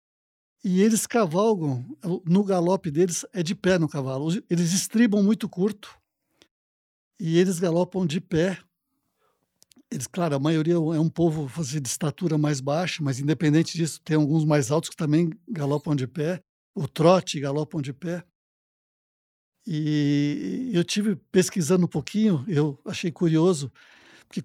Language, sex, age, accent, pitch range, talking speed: Portuguese, male, 60-79, Brazilian, 155-200 Hz, 145 wpm